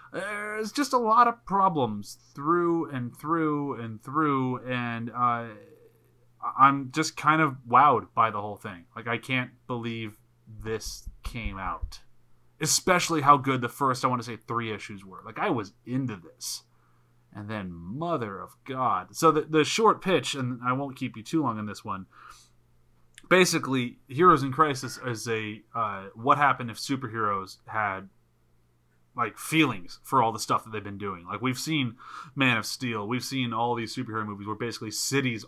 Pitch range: 110-145 Hz